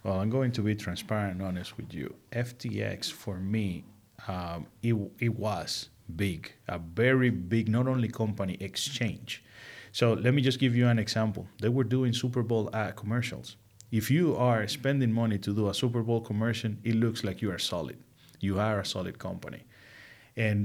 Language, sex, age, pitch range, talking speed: English, male, 30-49, 105-120 Hz, 185 wpm